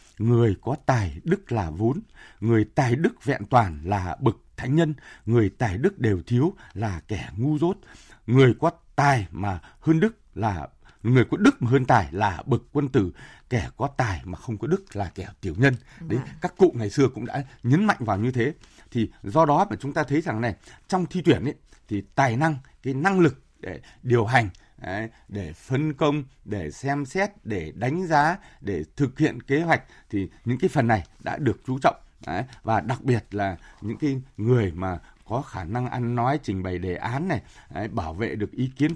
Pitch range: 105-145 Hz